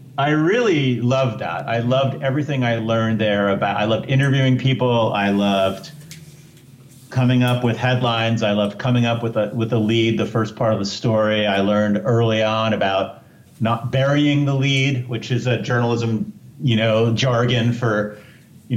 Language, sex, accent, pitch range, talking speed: English, male, American, 110-140 Hz, 175 wpm